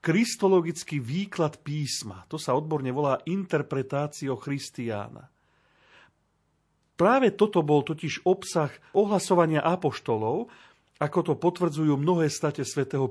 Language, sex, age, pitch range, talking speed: Slovak, male, 40-59, 130-175 Hz, 100 wpm